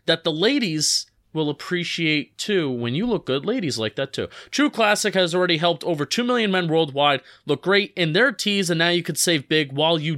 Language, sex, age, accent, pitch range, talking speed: English, male, 30-49, American, 150-190 Hz, 220 wpm